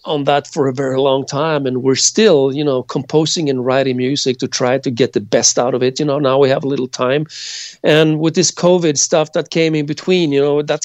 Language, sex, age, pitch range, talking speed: English, male, 40-59, 130-160 Hz, 250 wpm